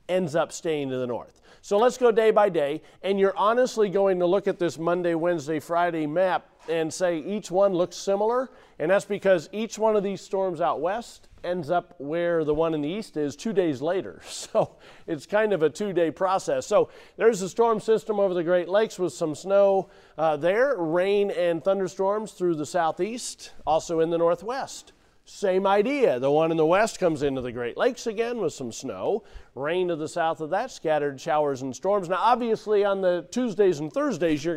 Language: English